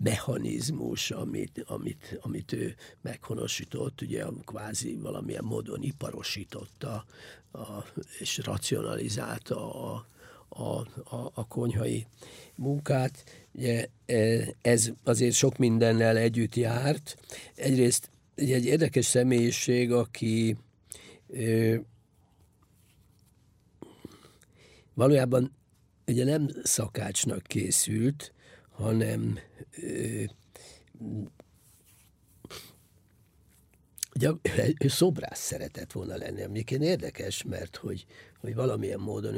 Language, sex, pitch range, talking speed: English, male, 100-125 Hz, 70 wpm